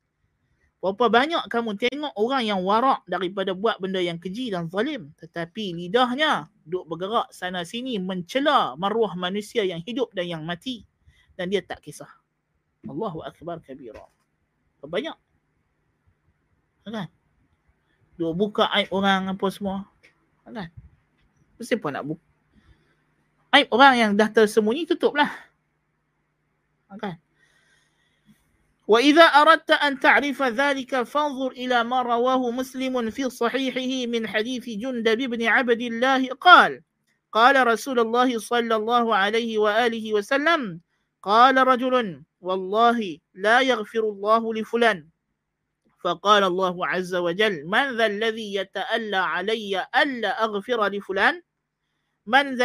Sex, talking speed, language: male, 115 wpm, Malay